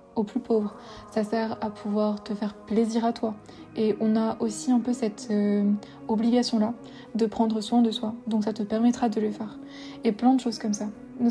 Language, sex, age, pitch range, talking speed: French, female, 20-39, 215-235 Hz, 220 wpm